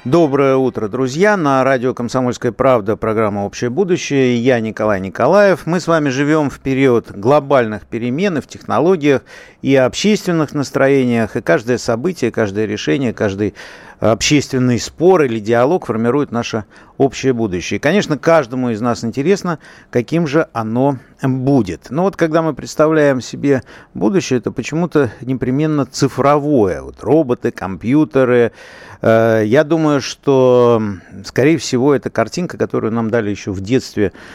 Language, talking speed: Russian, 135 wpm